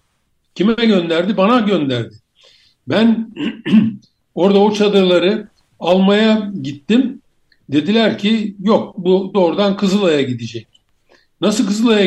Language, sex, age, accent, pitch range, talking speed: Turkish, male, 60-79, native, 170-210 Hz, 95 wpm